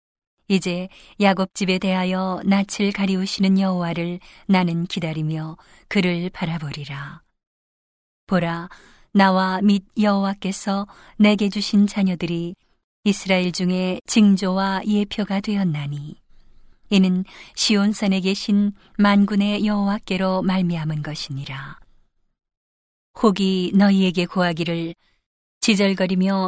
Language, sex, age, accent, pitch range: Korean, female, 40-59, native, 175-205 Hz